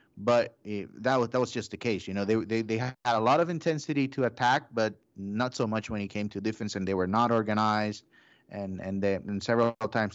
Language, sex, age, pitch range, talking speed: English, male, 30-49, 105-125 Hz, 240 wpm